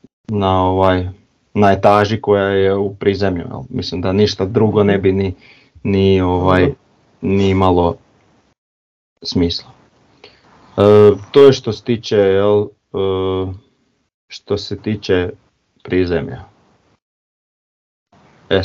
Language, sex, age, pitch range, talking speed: Croatian, male, 40-59, 95-120 Hz, 105 wpm